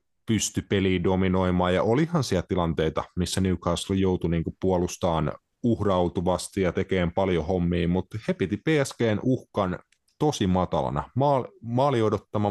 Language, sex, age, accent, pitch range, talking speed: Finnish, male, 30-49, native, 80-105 Hz, 120 wpm